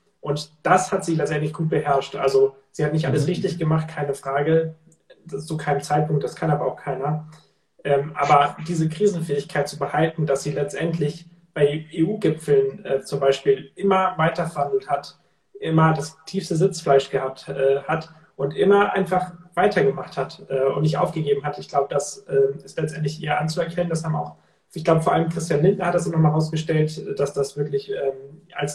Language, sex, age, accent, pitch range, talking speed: German, male, 30-49, German, 140-170 Hz, 180 wpm